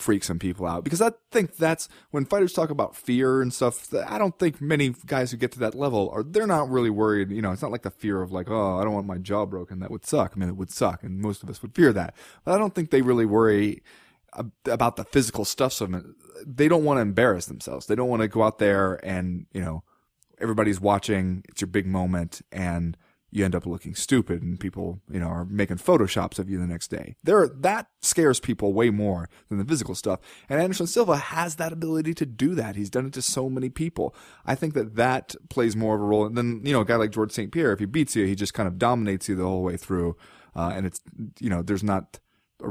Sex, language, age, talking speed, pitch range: male, English, 30-49, 250 wpm, 95-130 Hz